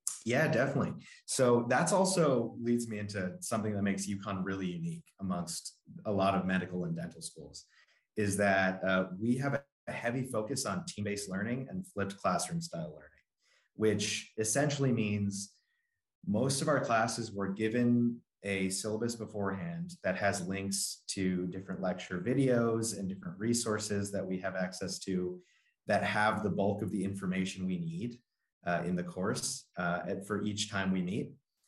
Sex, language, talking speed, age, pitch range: male, English, 160 wpm, 30-49, 95-115 Hz